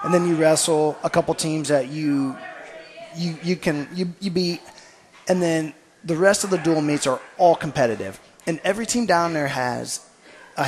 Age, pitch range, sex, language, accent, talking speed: 30-49, 130-160 Hz, male, English, American, 185 wpm